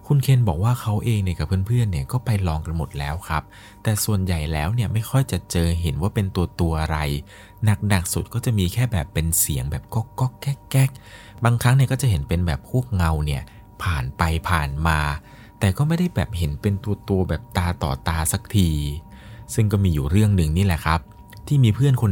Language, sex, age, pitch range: Thai, male, 20-39, 80-105 Hz